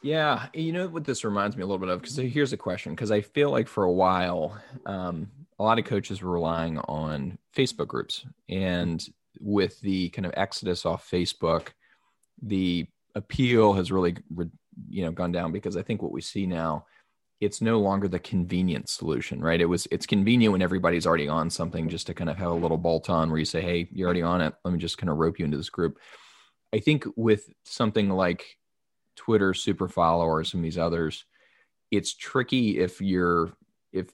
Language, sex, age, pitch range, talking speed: English, male, 20-39, 85-105 Hz, 200 wpm